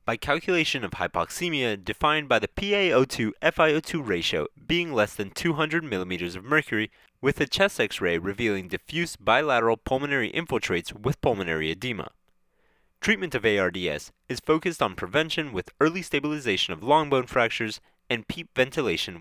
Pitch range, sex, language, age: 105-165 Hz, male, English, 20-39